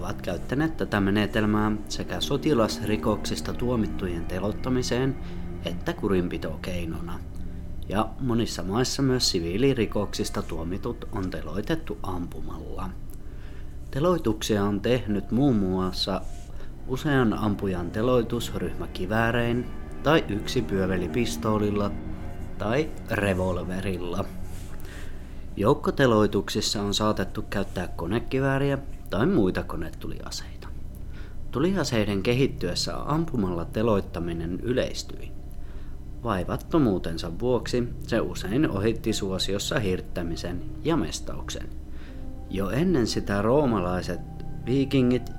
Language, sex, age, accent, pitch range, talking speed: Finnish, male, 30-49, native, 85-120 Hz, 80 wpm